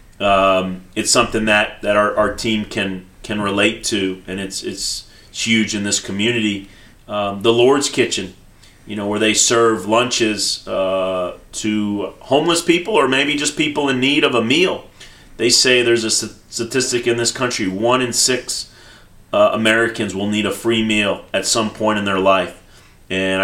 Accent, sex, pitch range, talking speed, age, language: American, male, 95-115 Hz, 170 wpm, 30-49, English